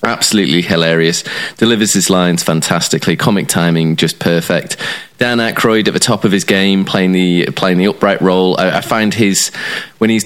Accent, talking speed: British, 175 wpm